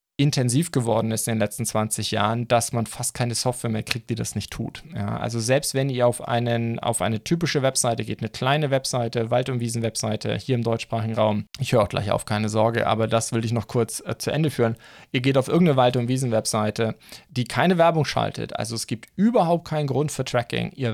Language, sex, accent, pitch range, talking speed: German, male, German, 110-130 Hz, 225 wpm